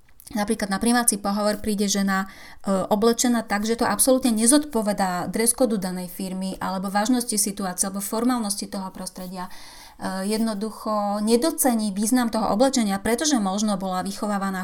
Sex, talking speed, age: female, 135 wpm, 30-49